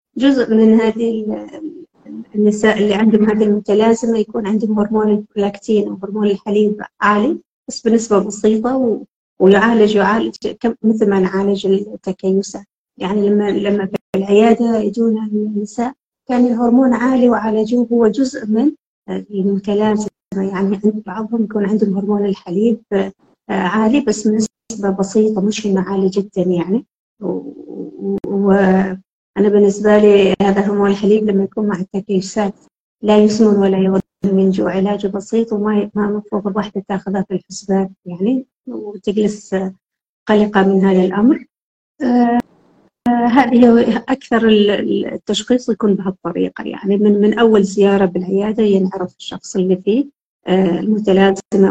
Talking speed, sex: 120 wpm, female